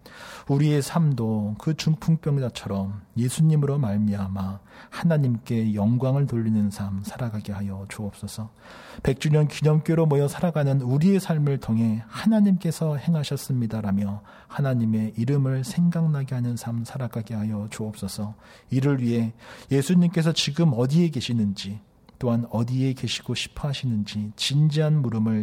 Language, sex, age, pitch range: Korean, male, 40-59, 105-145 Hz